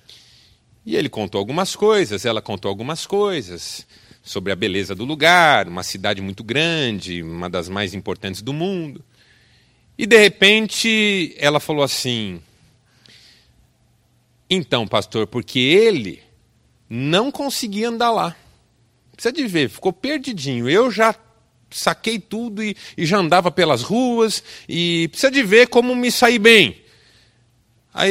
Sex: male